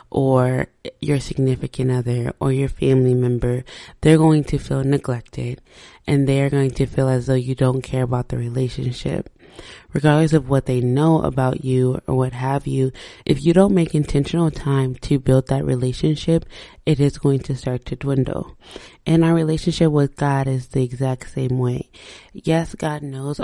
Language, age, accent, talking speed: English, 20-39, American, 170 wpm